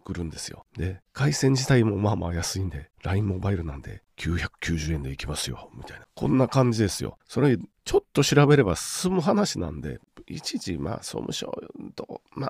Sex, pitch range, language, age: male, 95-155 Hz, Japanese, 40-59